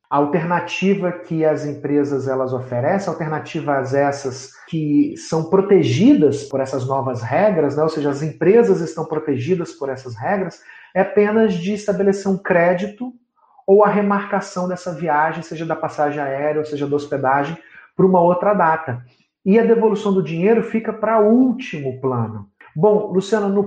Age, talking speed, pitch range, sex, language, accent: 40-59, 155 wpm, 145-195 Hz, male, Portuguese, Brazilian